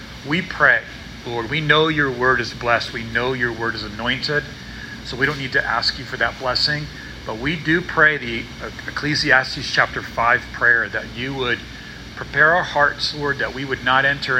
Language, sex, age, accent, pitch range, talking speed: English, male, 40-59, American, 115-140 Hz, 190 wpm